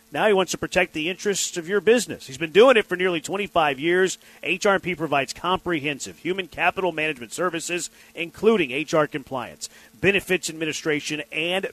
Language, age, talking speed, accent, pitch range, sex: English, 40-59, 160 wpm, American, 160-205 Hz, male